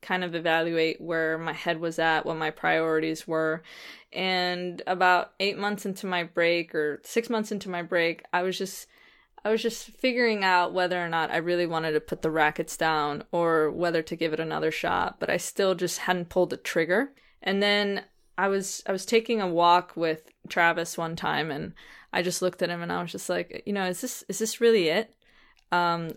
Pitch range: 165-185 Hz